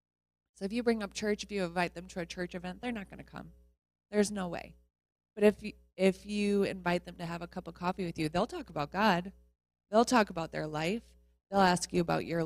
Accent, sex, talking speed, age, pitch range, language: American, female, 245 wpm, 20-39, 160-200 Hz, English